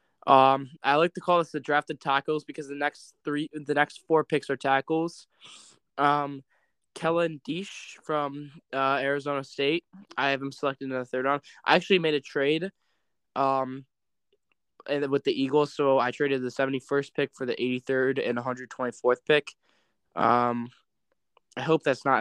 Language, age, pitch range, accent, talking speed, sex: English, 10-29, 130-150 Hz, American, 170 wpm, male